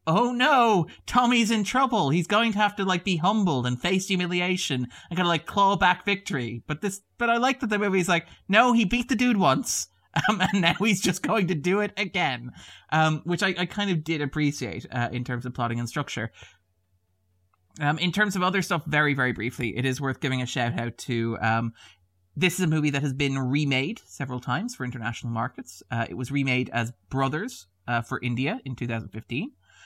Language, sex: English, male